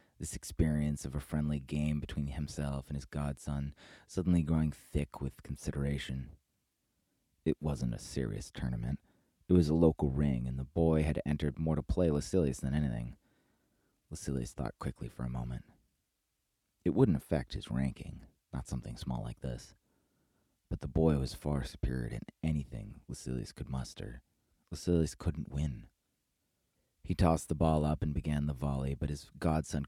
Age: 30-49